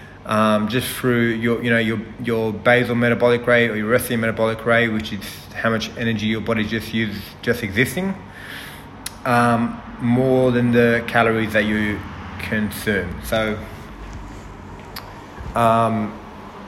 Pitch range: 105-130 Hz